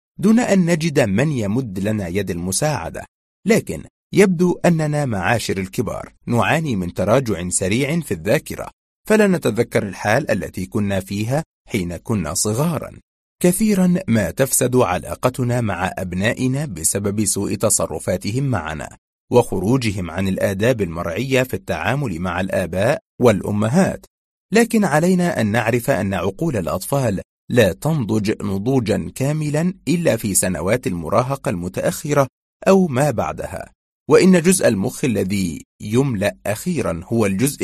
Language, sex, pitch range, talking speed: Arabic, male, 95-150 Hz, 120 wpm